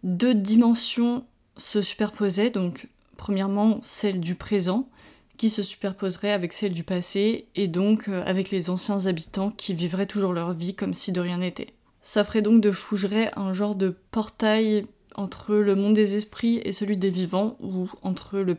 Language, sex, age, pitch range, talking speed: English, female, 20-39, 185-215 Hz, 175 wpm